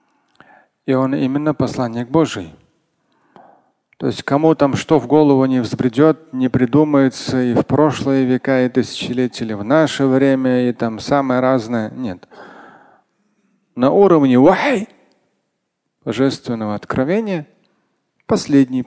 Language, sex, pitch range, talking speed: Russian, male, 120-150 Hz, 115 wpm